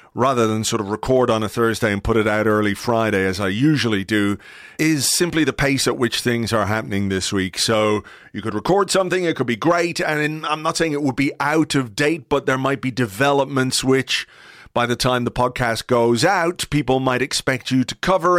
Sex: male